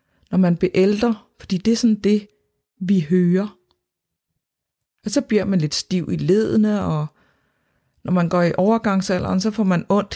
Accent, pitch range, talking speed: native, 180-220 Hz, 170 wpm